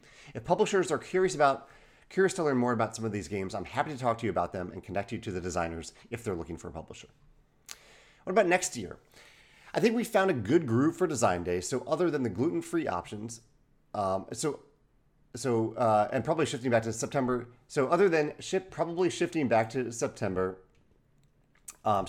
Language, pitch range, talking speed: English, 105-140 Hz, 200 wpm